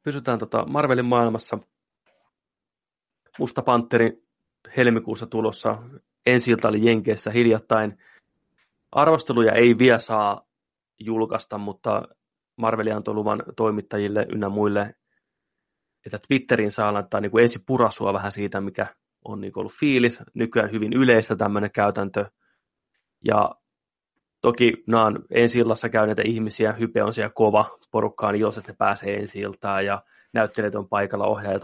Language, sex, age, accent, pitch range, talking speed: Finnish, male, 30-49, native, 105-115 Hz, 125 wpm